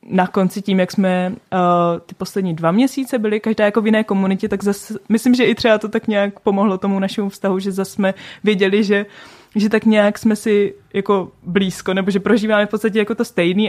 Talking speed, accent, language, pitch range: 215 wpm, native, Czech, 190-210 Hz